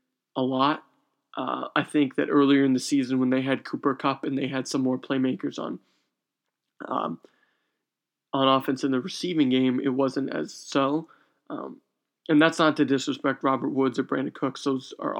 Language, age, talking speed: English, 20-39, 180 wpm